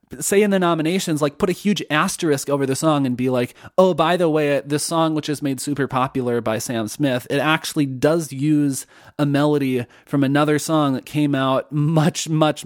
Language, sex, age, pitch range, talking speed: English, male, 30-49, 130-165 Hz, 205 wpm